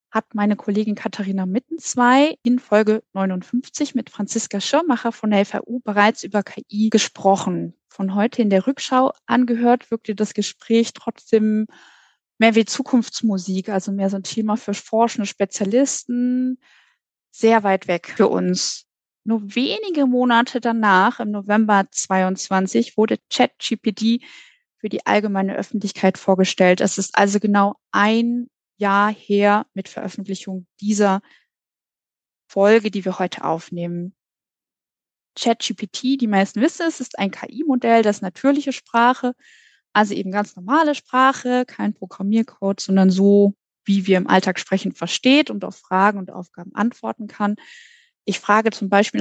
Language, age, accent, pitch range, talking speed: German, 20-39, German, 195-245 Hz, 135 wpm